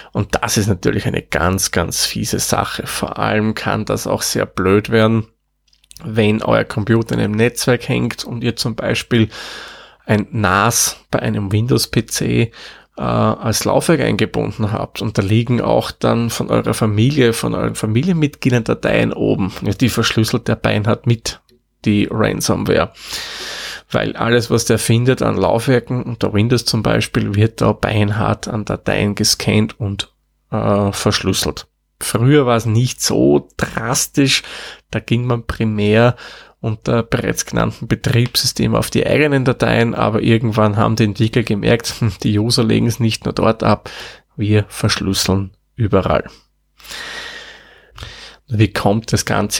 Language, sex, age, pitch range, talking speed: German, male, 20-39, 105-120 Hz, 145 wpm